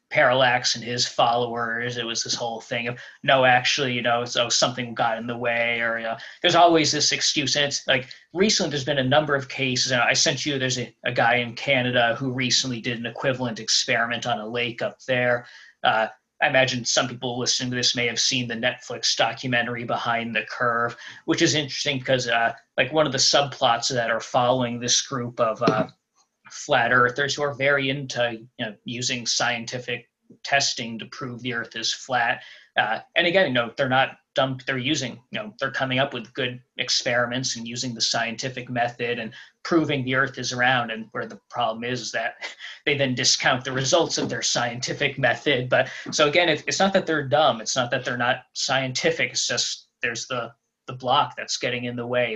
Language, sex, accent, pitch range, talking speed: English, male, American, 120-140 Hz, 205 wpm